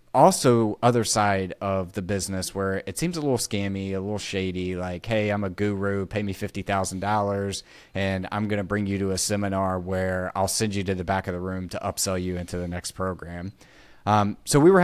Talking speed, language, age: 215 wpm, English, 30-49